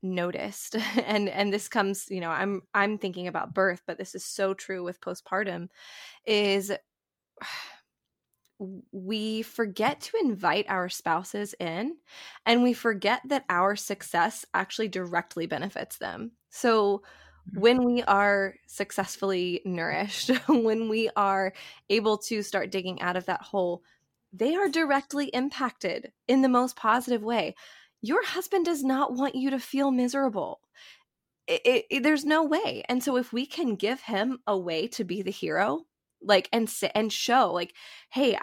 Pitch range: 195-255 Hz